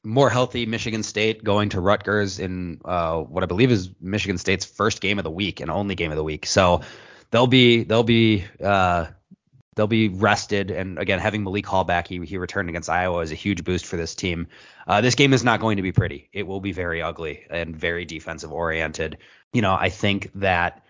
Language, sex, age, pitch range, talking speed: English, male, 20-39, 90-105 Hz, 220 wpm